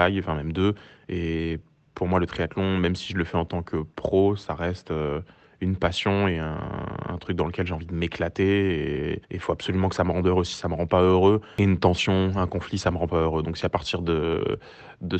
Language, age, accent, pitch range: French, 20-39, French, 85-100 Hz